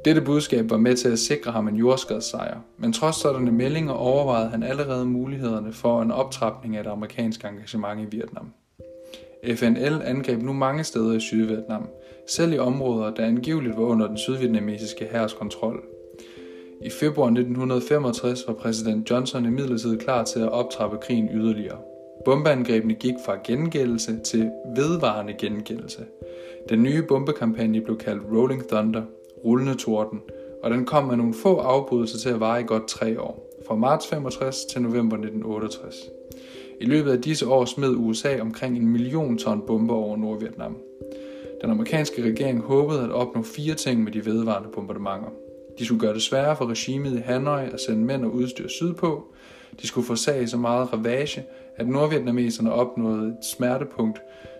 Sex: male